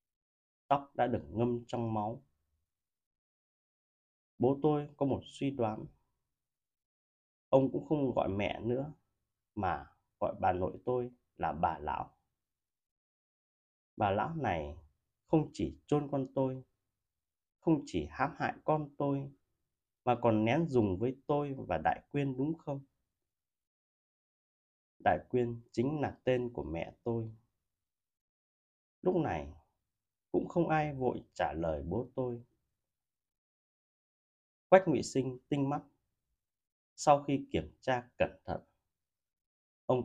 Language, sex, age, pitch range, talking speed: Vietnamese, male, 20-39, 100-140 Hz, 120 wpm